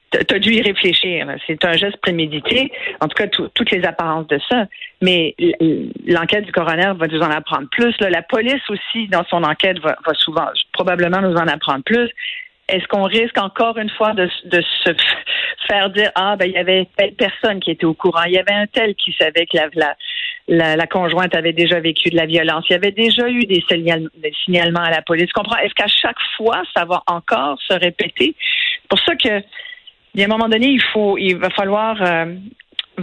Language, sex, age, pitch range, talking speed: French, female, 50-69, 170-225 Hz, 215 wpm